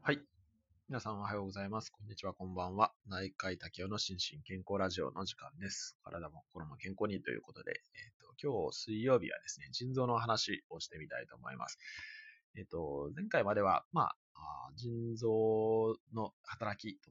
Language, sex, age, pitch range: Japanese, male, 20-39, 95-135 Hz